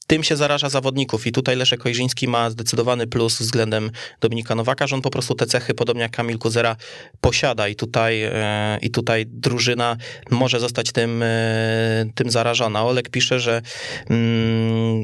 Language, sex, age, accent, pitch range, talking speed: Polish, male, 20-39, native, 115-140 Hz, 165 wpm